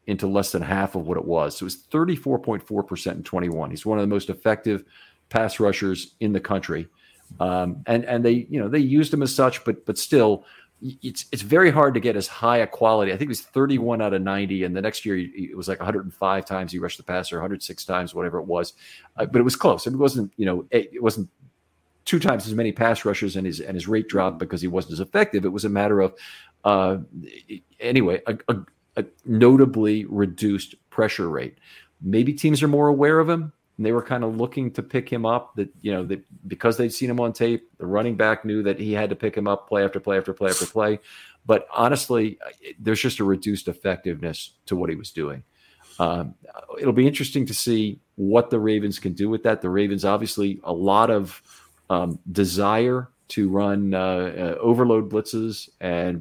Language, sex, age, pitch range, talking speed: English, male, 40-59, 95-115 Hz, 220 wpm